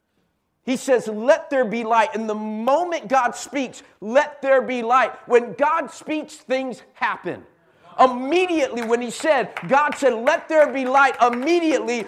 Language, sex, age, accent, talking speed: English, male, 50-69, American, 155 wpm